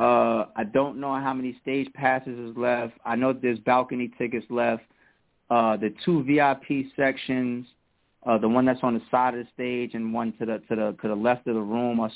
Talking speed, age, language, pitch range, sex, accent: 210 wpm, 30-49, English, 110-130 Hz, male, American